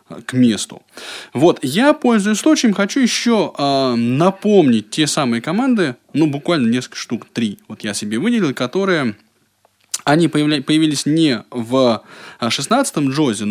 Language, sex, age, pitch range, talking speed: Russian, male, 20-39, 120-160 Hz, 135 wpm